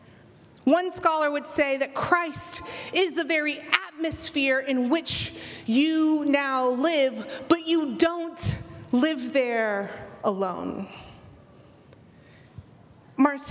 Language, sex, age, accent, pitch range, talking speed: English, female, 30-49, American, 255-320 Hz, 100 wpm